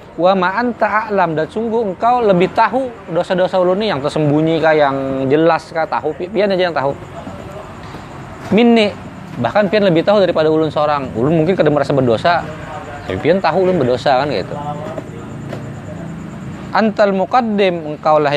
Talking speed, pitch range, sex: 145 wpm, 155-205 Hz, male